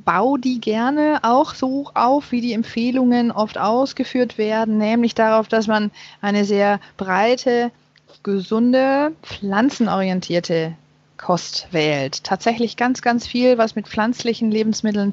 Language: German